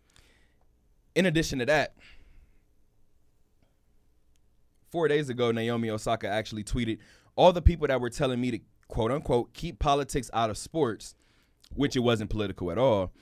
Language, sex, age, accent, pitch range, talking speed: English, male, 20-39, American, 95-125 Hz, 145 wpm